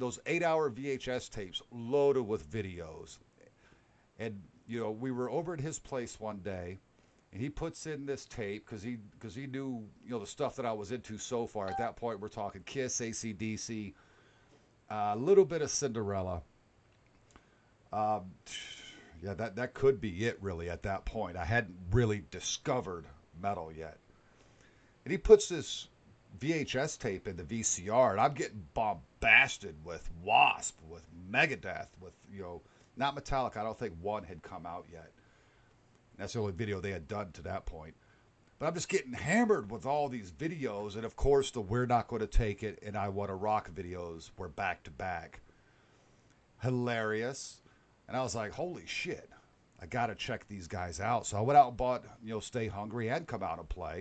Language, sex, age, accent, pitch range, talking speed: English, male, 50-69, American, 100-125 Hz, 180 wpm